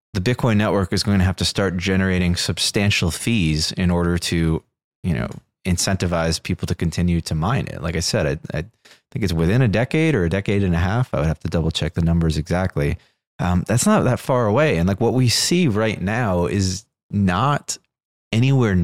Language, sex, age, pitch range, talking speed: English, male, 20-39, 80-100 Hz, 205 wpm